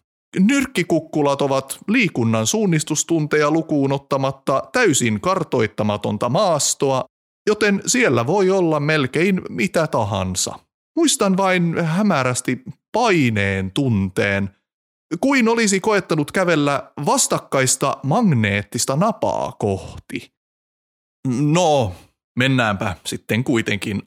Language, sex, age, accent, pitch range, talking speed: Finnish, male, 30-49, native, 120-185 Hz, 80 wpm